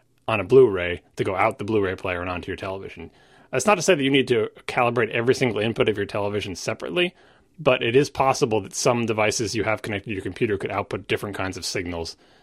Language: English